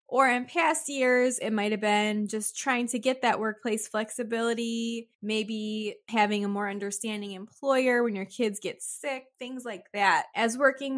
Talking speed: 170 wpm